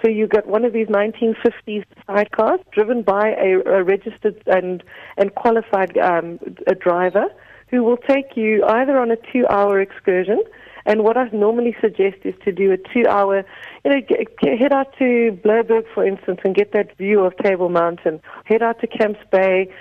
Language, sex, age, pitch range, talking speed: English, female, 40-59, 190-235 Hz, 185 wpm